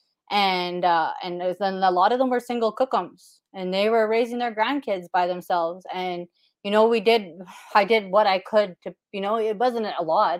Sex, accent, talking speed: female, American, 220 wpm